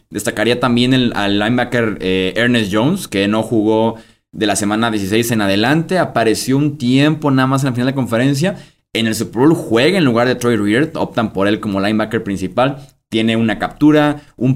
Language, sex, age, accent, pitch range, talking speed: Spanish, male, 20-39, Mexican, 105-140 Hz, 195 wpm